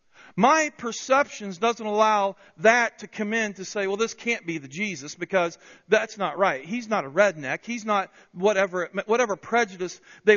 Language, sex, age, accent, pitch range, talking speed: English, male, 40-59, American, 170-225 Hz, 175 wpm